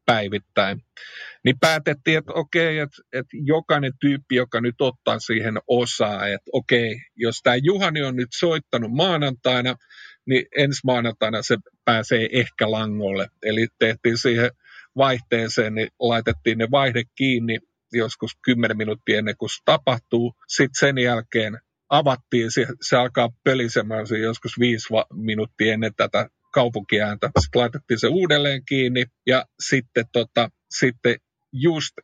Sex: male